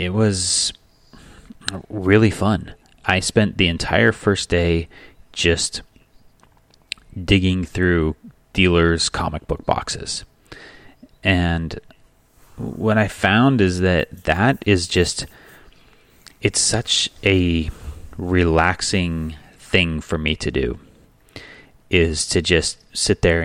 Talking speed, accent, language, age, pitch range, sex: 100 wpm, American, English, 30-49, 80-95 Hz, male